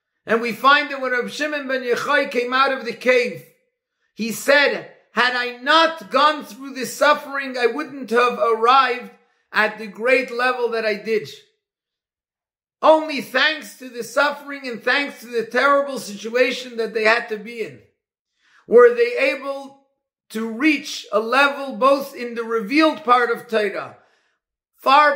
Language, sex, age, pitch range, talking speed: English, male, 50-69, 235-280 Hz, 155 wpm